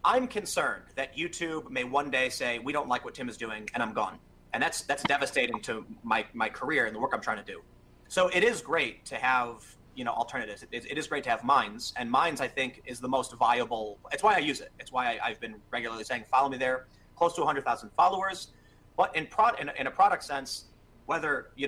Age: 30-49